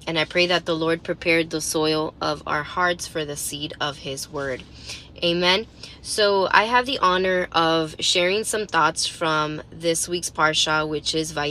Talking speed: 180 wpm